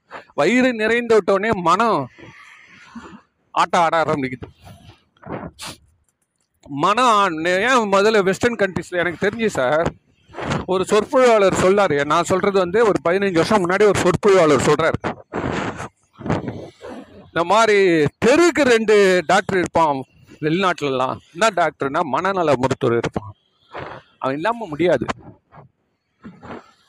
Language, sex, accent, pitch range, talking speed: Tamil, male, native, 160-215 Hz, 65 wpm